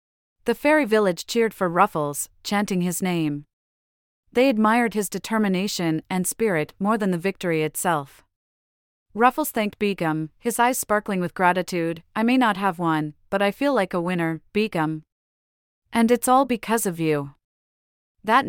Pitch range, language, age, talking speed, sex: 160-215 Hz, English, 30-49, 155 wpm, female